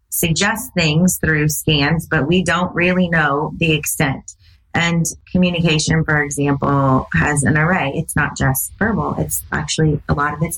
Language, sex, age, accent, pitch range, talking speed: English, female, 30-49, American, 140-165 Hz, 160 wpm